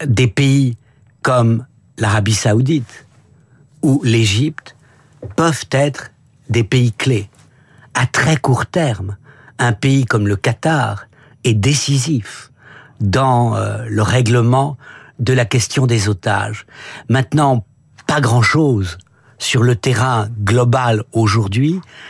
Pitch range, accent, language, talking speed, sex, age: 115-140 Hz, French, French, 105 wpm, male, 60-79